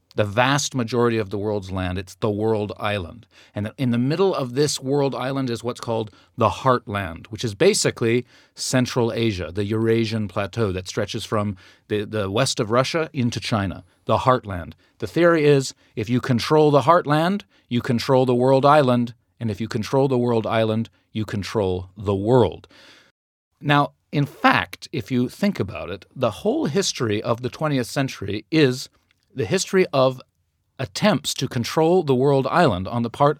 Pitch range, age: 105-140 Hz, 40-59